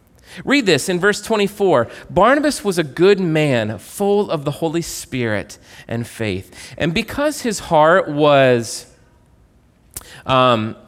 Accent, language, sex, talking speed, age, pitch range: American, English, male, 125 wpm, 30-49, 145-205 Hz